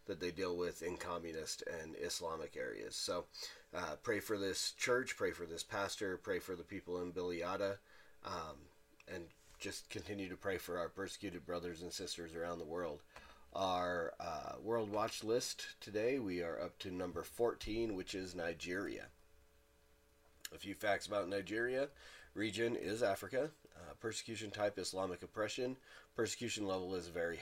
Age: 30-49